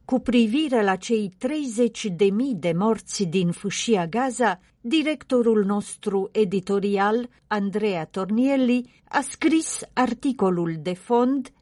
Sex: female